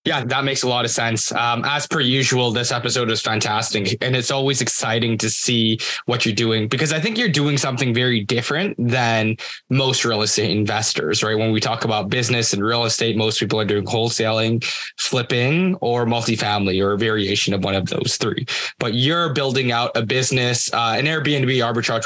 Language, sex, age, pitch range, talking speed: English, male, 10-29, 115-140 Hz, 195 wpm